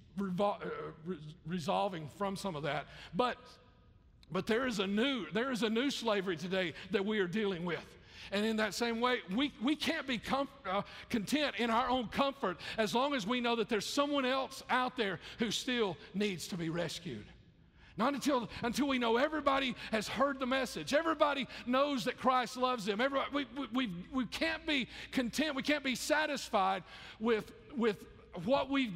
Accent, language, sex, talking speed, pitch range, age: American, English, male, 185 wpm, 170-240 Hz, 50-69